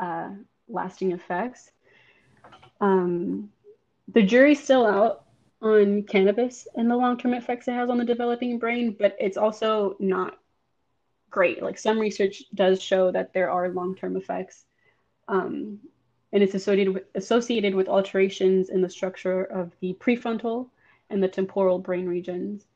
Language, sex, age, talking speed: English, female, 20-39, 140 wpm